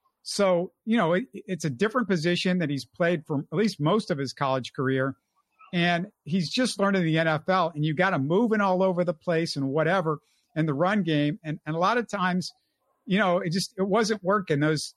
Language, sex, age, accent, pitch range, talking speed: English, male, 50-69, American, 150-200 Hz, 225 wpm